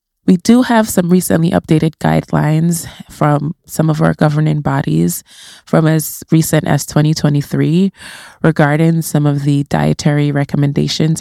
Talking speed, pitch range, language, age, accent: 130 wpm, 150-170 Hz, English, 20-39, American